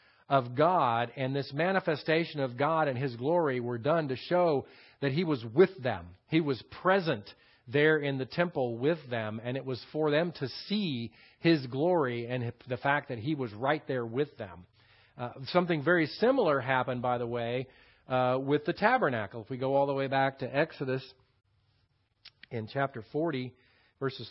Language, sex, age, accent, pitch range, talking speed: English, male, 40-59, American, 125-155 Hz, 180 wpm